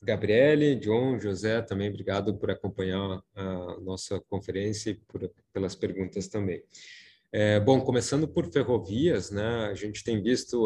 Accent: Brazilian